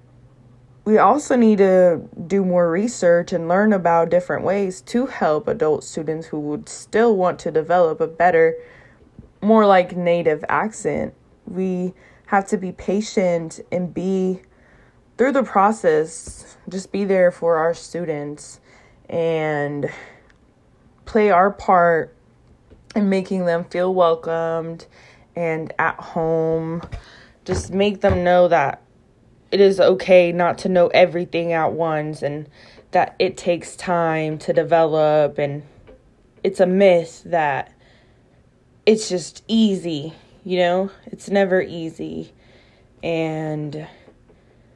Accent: American